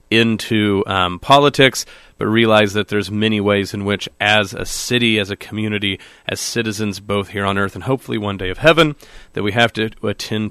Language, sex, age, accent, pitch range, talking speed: English, male, 30-49, American, 105-130 Hz, 195 wpm